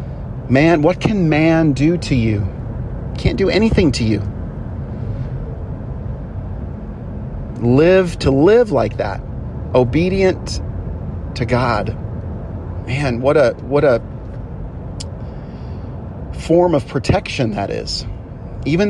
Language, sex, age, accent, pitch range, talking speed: English, male, 40-59, American, 110-150 Hz, 100 wpm